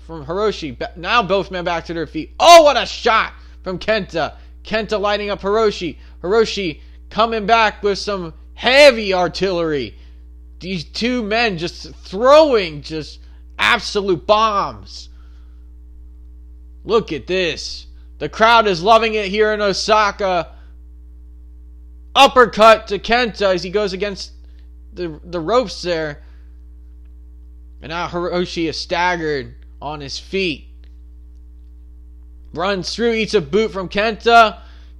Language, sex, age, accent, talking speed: English, male, 20-39, American, 120 wpm